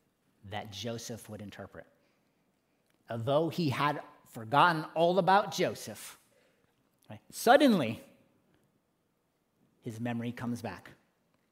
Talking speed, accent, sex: 85 wpm, American, male